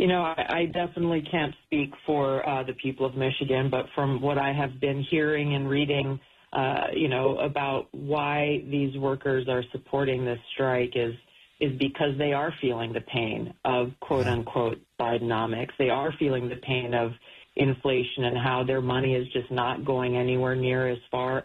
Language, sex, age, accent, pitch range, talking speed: English, female, 40-59, American, 130-145 Hz, 175 wpm